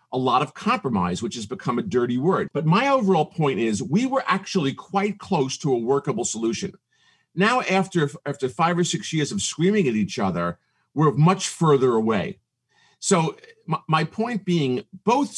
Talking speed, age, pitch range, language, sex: 180 wpm, 50-69, 140-195 Hz, English, male